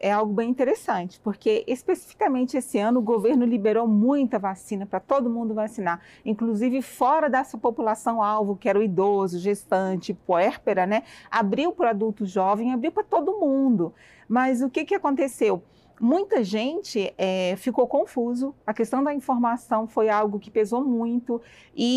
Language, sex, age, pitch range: Portuguese, female, 40-59, 220-285 Hz